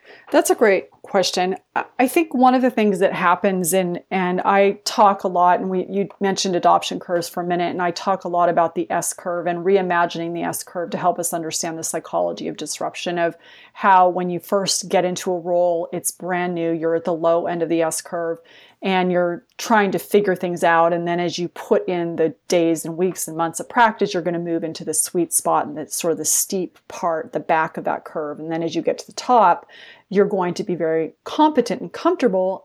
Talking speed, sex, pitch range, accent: 230 wpm, female, 170-205 Hz, American